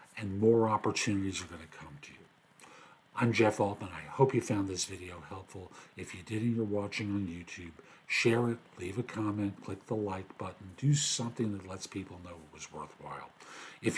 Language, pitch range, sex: English, 100-130 Hz, male